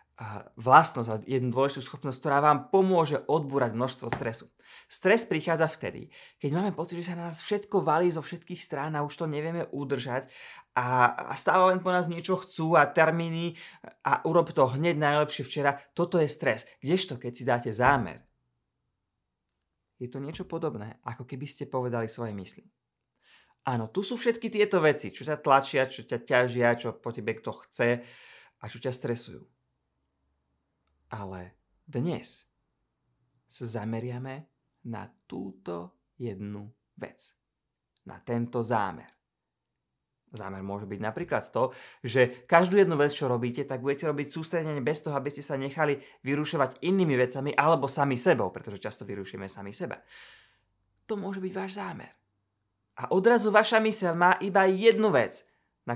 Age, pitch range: 30-49, 115-165 Hz